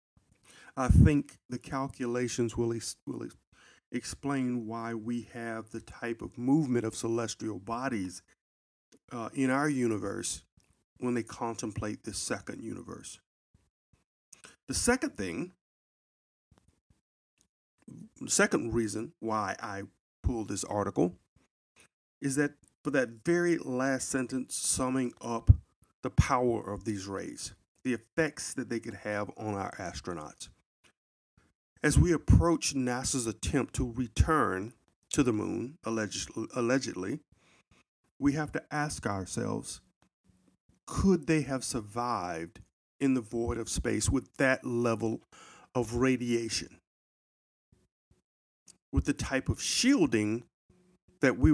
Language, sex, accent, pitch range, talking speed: English, male, American, 100-130 Hz, 115 wpm